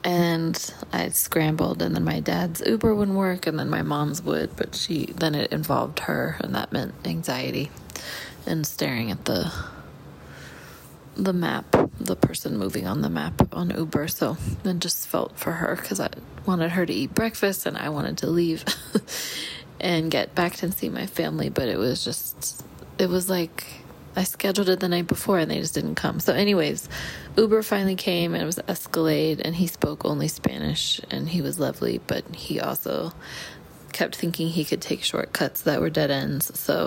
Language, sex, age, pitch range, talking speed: English, female, 20-39, 155-185 Hz, 185 wpm